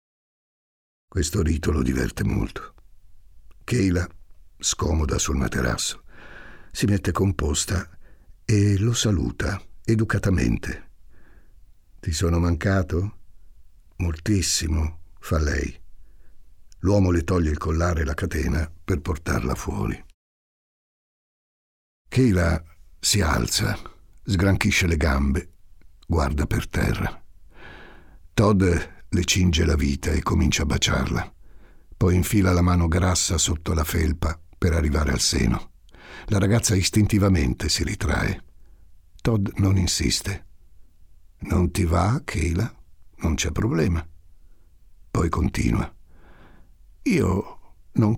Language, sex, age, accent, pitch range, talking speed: Italian, male, 60-79, native, 80-100 Hz, 100 wpm